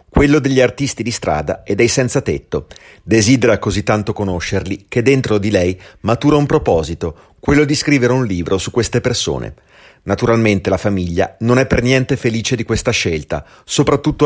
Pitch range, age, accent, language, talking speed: 100-145 Hz, 30-49, native, Italian, 170 wpm